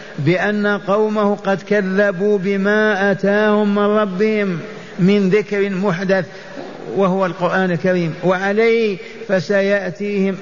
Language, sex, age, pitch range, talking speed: Arabic, male, 50-69, 180-205 Hz, 90 wpm